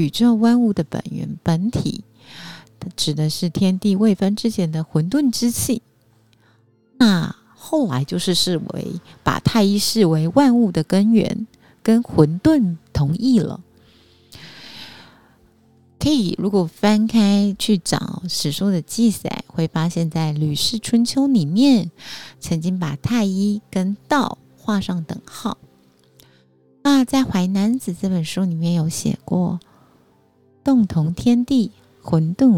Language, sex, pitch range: Chinese, female, 155-215 Hz